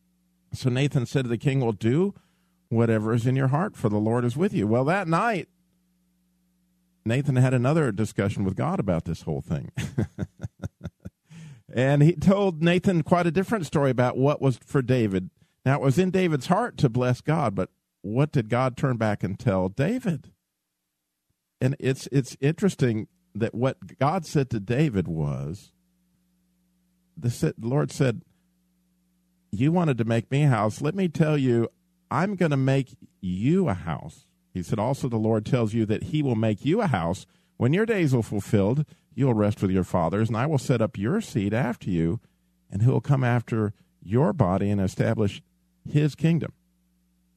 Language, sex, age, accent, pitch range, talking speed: English, male, 50-69, American, 105-165 Hz, 175 wpm